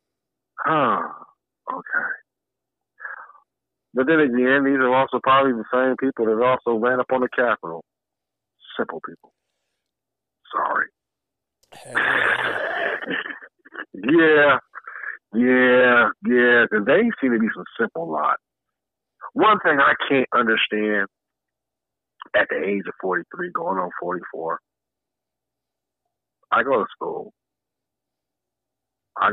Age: 50-69